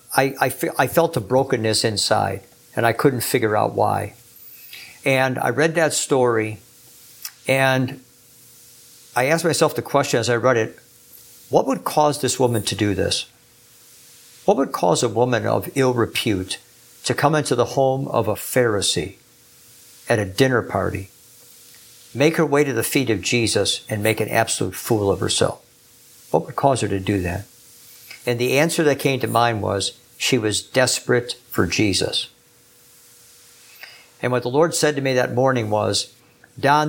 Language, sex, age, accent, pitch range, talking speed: English, male, 60-79, American, 110-135 Hz, 170 wpm